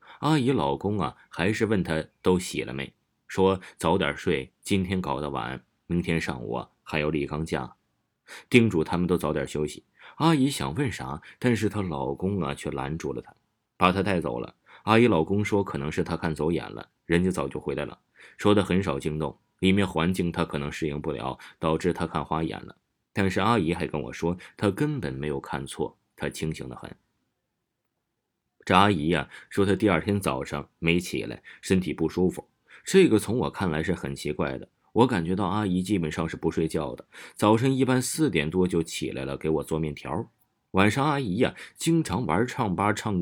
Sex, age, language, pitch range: male, 20-39, Chinese, 80-105 Hz